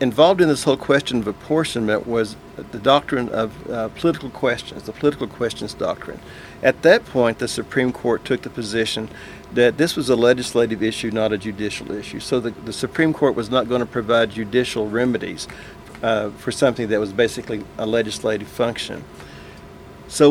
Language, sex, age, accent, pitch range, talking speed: English, male, 50-69, American, 110-130 Hz, 175 wpm